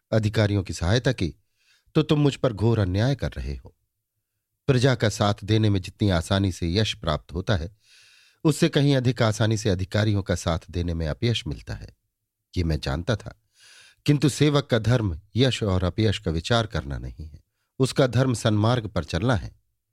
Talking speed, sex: 180 wpm, male